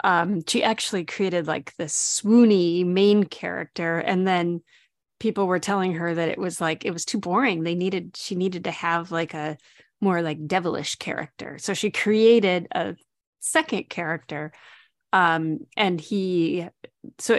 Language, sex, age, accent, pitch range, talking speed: English, female, 30-49, American, 170-210 Hz, 155 wpm